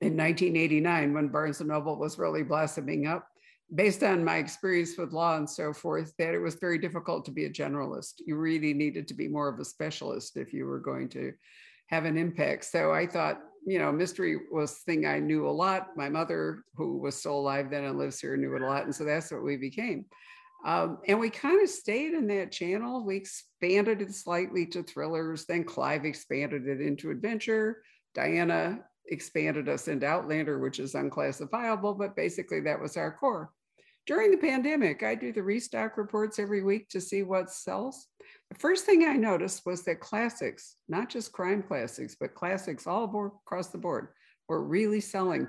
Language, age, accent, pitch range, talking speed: English, 60-79, American, 150-210 Hz, 195 wpm